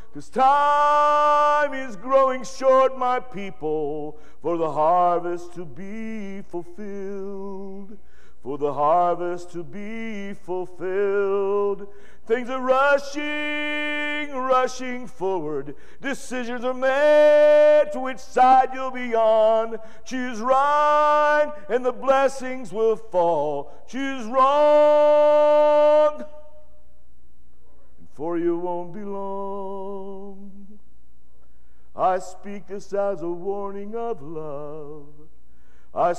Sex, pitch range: male, 175-265 Hz